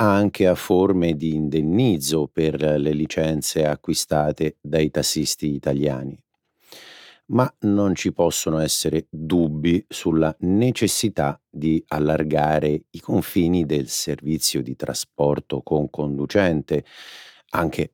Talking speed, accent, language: 105 wpm, native, Italian